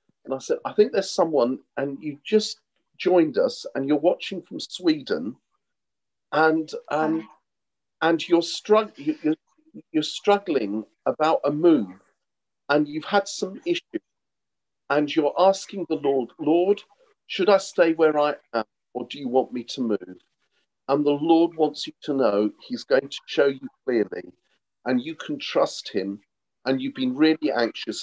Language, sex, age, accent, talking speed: English, male, 50-69, British, 160 wpm